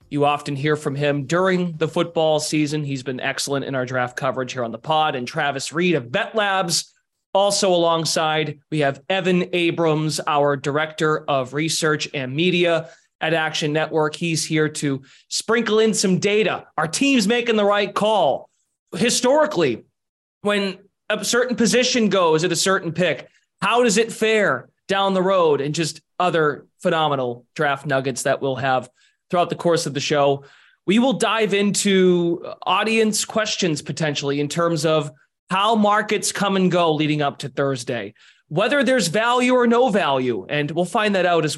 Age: 30-49